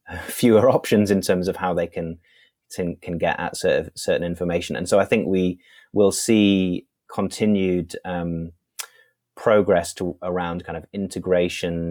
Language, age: English, 30-49